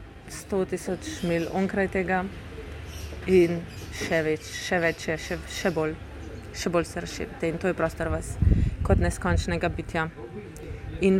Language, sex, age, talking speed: English, female, 20-39, 135 wpm